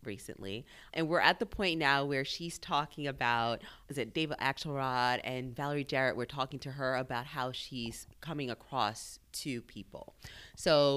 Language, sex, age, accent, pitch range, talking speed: English, female, 30-49, American, 130-180 Hz, 160 wpm